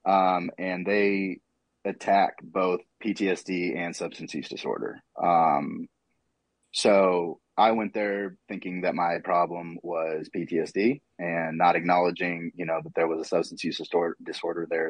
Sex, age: male, 30-49